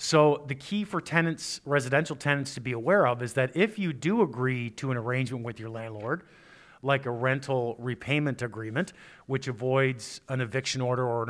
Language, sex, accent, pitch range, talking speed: English, male, American, 125-145 Hz, 185 wpm